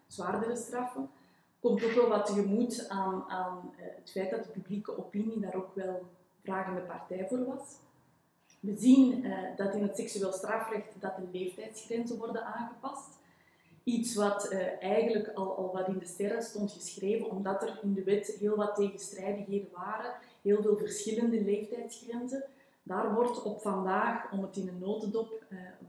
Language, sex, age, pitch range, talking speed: Dutch, female, 20-39, 195-235 Hz, 165 wpm